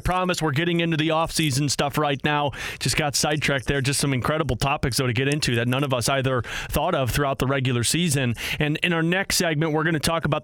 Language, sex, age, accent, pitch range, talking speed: English, male, 30-49, American, 140-175 Hz, 240 wpm